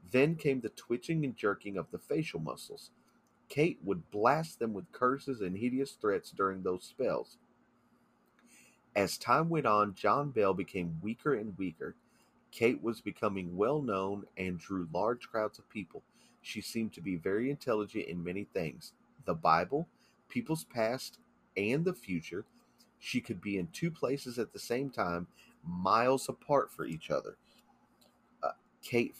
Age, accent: 40-59, American